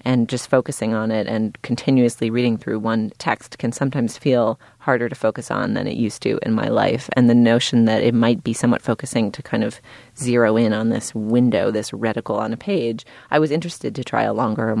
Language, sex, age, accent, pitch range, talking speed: English, female, 30-49, American, 115-135 Hz, 225 wpm